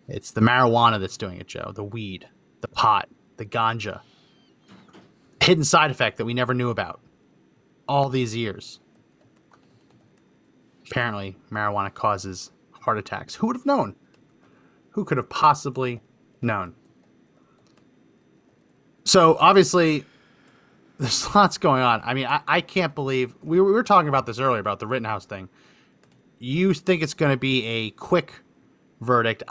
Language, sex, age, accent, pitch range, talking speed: English, male, 30-49, American, 115-150 Hz, 140 wpm